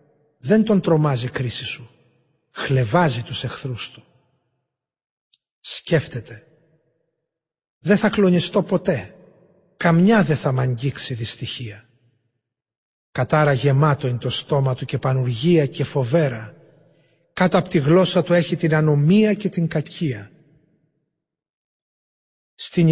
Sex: male